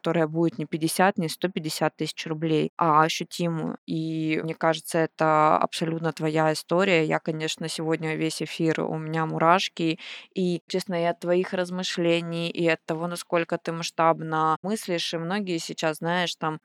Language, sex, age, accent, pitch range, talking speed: Russian, female, 20-39, native, 160-185 Hz, 150 wpm